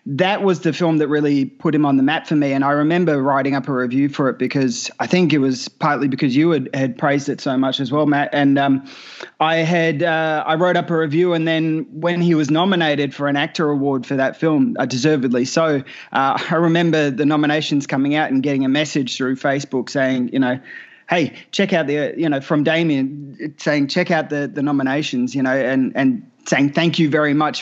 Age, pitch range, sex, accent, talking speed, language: 20-39, 140-165 Hz, male, Australian, 225 wpm, English